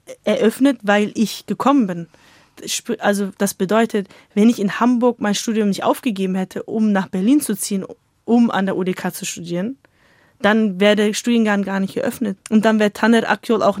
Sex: female